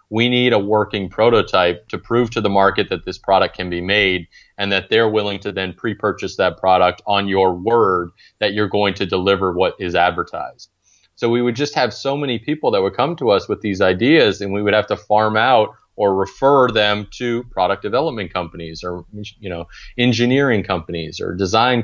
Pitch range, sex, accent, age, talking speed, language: 95-110 Hz, male, American, 30-49, 200 wpm, English